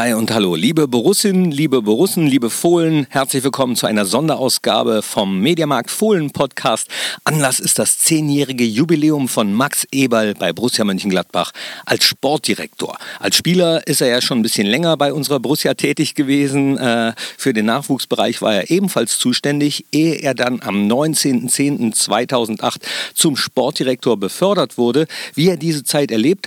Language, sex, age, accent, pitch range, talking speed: German, male, 50-69, German, 120-155 Hz, 145 wpm